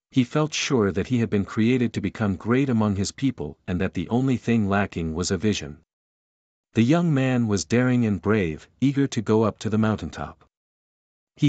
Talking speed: 200 wpm